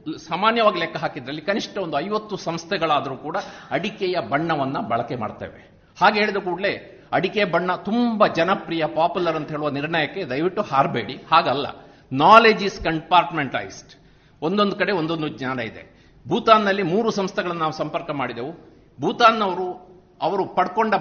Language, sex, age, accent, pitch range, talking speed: Kannada, male, 50-69, native, 155-205 Hz, 125 wpm